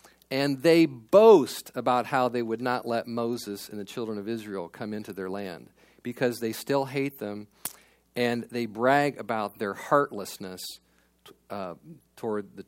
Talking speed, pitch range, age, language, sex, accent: 155 wpm, 115-180 Hz, 40-59, English, male, American